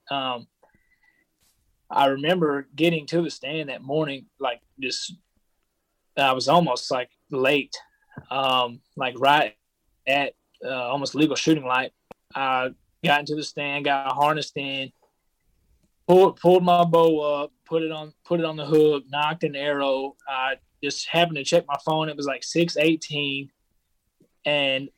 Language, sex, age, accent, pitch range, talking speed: English, male, 20-39, American, 135-160 Hz, 150 wpm